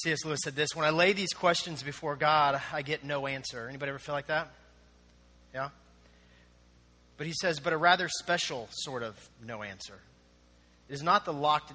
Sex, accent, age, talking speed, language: male, American, 40-59, 190 wpm, English